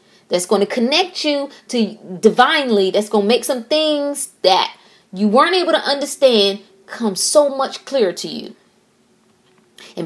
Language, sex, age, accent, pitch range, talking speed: English, female, 20-39, American, 195-245 Hz, 155 wpm